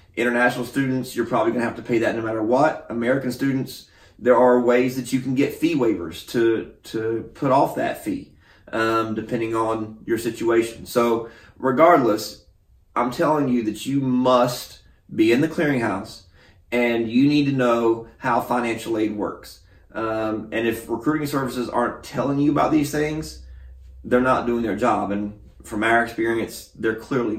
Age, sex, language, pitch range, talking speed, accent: 30-49, male, English, 110-130 Hz, 170 wpm, American